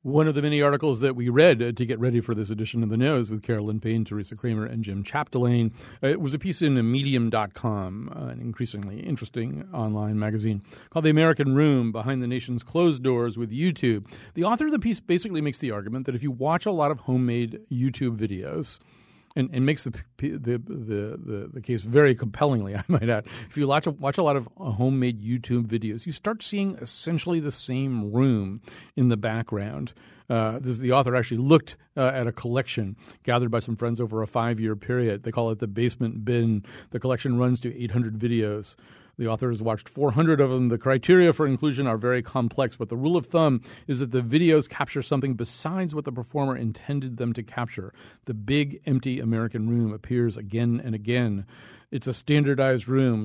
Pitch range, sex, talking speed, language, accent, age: 115-140 Hz, male, 200 wpm, English, American, 40-59